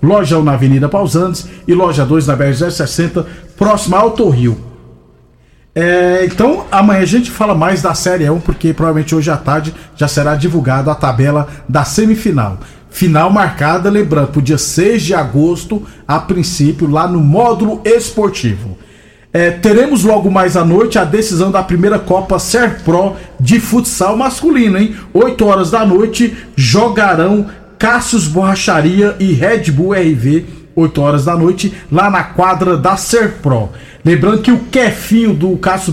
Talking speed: 155 wpm